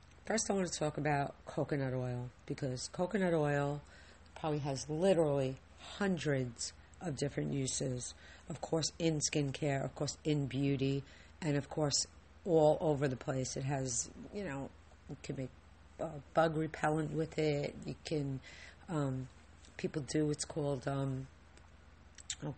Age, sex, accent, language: 40-59, female, American, English